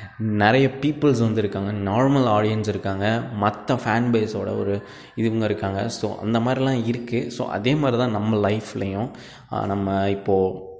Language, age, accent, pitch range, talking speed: Tamil, 20-39, native, 105-125 Hz, 135 wpm